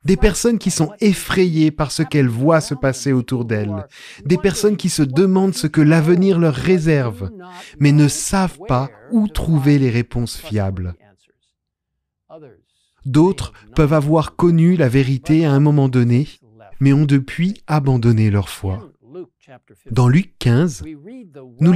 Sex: male